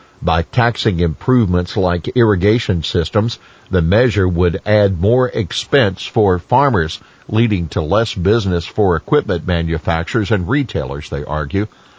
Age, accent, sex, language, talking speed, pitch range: 50-69, American, male, English, 125 wpm, 85-110 Hz